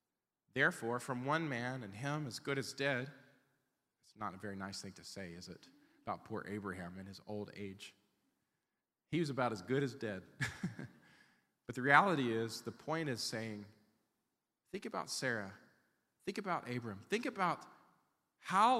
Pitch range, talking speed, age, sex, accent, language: 125-180 Hz, 165 wpm, 40-59, male, American, English